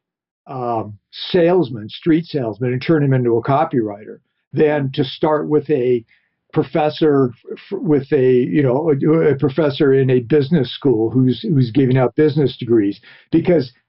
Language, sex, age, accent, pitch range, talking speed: English, male, 50-69, American, 130-155 Hz, 150 wpm